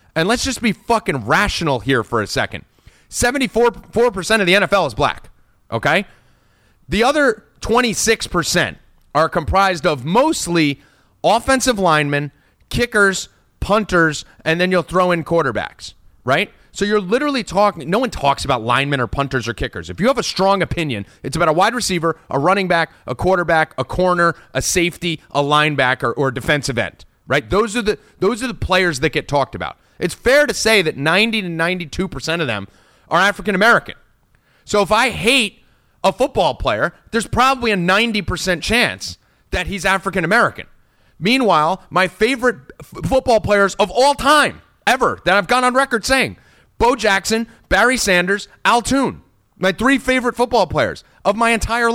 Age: 30-49